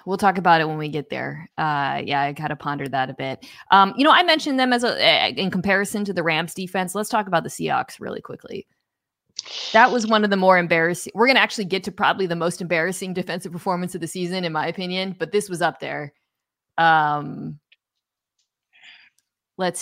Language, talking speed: English, 210 wpm